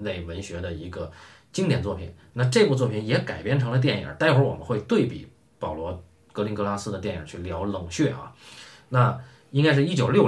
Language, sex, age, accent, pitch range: Chinese, male, 20-39, native, 95-135 Hz